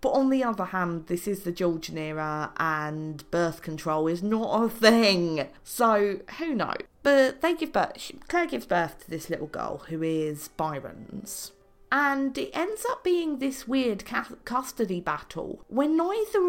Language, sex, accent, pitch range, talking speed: English, female, British, 170-270 Hz, 165 wpm